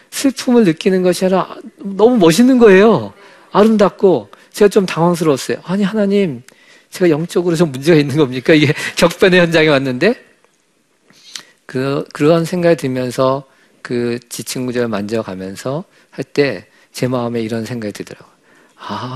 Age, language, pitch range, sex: 50-69, Korean, 130-195 Hz, male